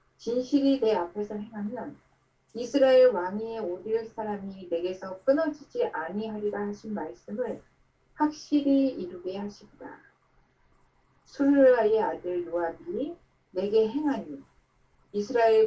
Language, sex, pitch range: Korean, female, 190-255 Hz